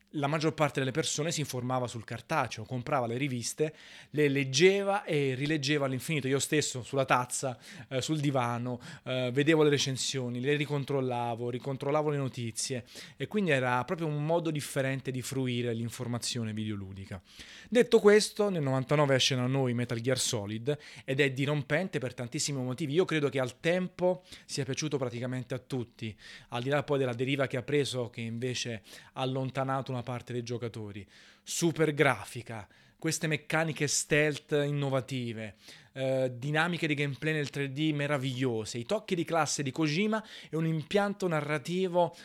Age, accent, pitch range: 30-49, native, 125-155 Hz